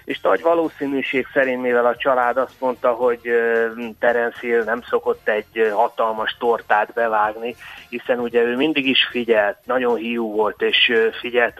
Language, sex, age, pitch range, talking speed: Hungarian, male, 30-49, 110-135 Hz, 145 wpm